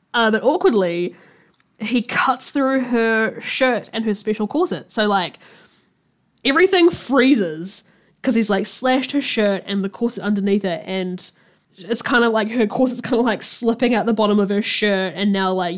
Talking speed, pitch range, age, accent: 180 wpm, 195-270 Hz, 10-29, Australian